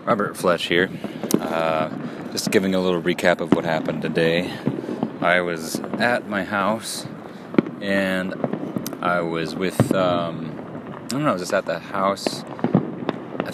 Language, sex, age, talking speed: English, male, 30-49, 140 wpm